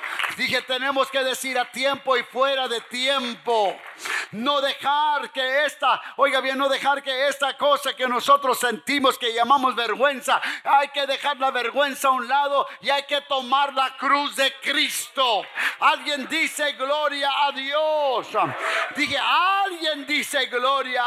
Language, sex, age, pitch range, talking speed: English, male, 50-69, 210-280 Hz, 150 wpm